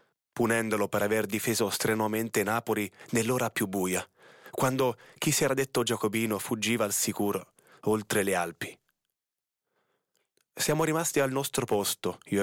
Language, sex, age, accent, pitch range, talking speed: Italian, male, 30-49, native, 105-130 Hz, 130 wpm